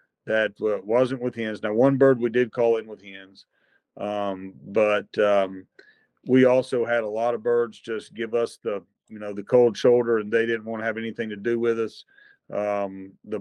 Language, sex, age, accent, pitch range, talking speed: English, male, 40-59, American, 105-125 Hz, 200 wpm